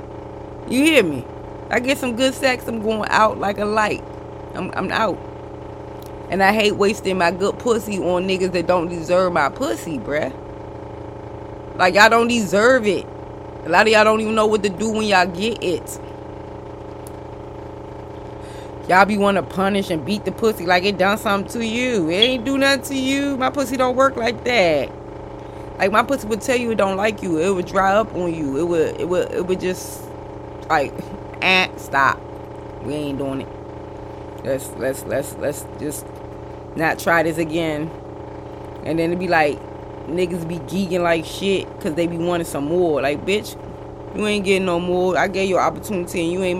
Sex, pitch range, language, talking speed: female, 175-215 Hz, English, 190 wpm